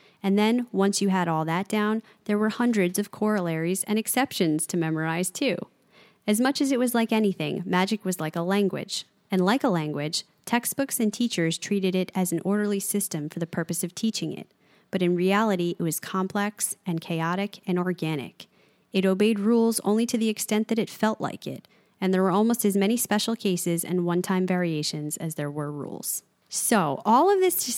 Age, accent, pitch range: 30-49, American, 175-220 Hz